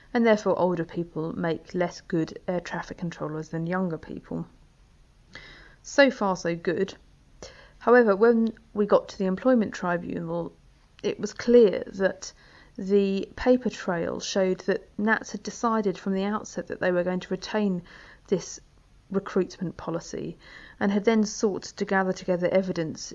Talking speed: 150 wpm